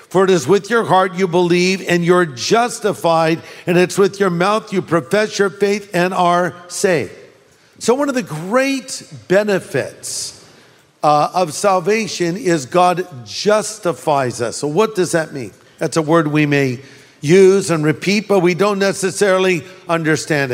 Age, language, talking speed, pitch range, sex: 50-69, English, 160 wpm, 170-210 Hz, male